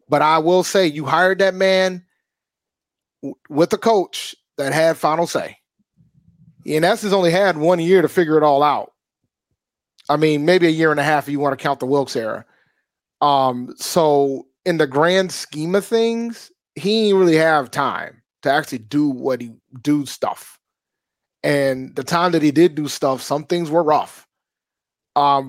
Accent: American